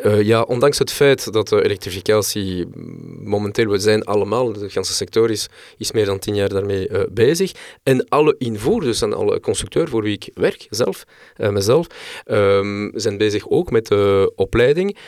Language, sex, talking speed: Dutch, male, 185 wpm